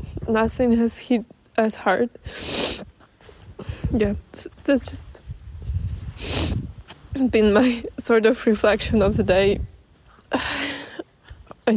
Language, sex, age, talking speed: English, female, 20-39, 85 wpm